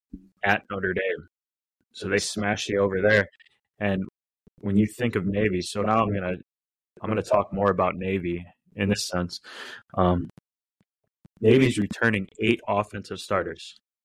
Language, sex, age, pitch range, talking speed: English, male, 20-39, 95-105 Hz, 145 wpm